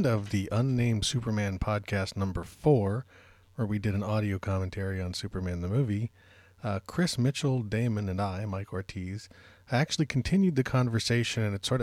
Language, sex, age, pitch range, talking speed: English, male, 40-59, 95-120 Hz, 160 wpm